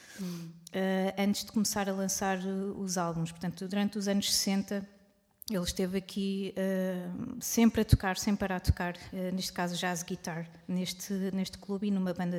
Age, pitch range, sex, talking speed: 20-39, 180-205 Hz, female, 165 wpm